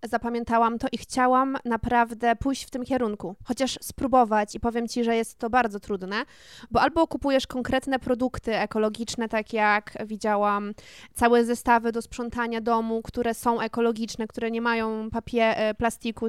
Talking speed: 145 wpm